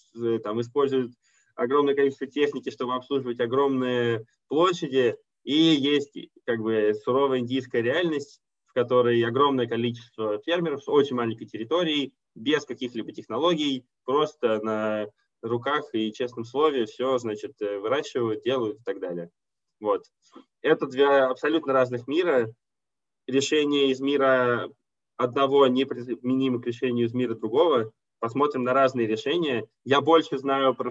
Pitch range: 115-145 Hz